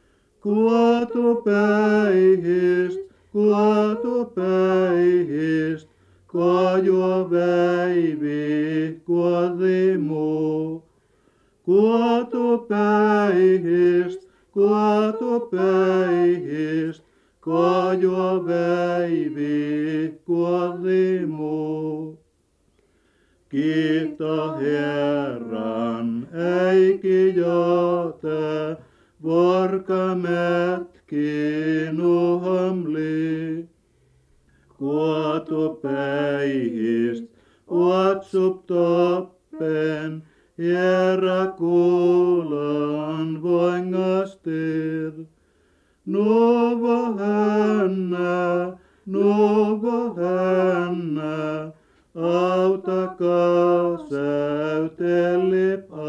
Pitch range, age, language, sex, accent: 155-185 Hz, 50-69, Finnish, male, native